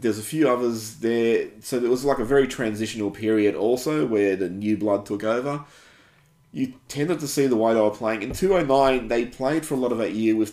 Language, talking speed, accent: English, 230 wpm, Australian